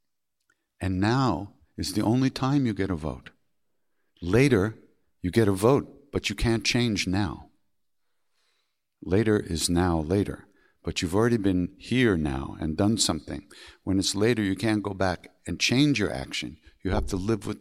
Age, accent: 60-79, American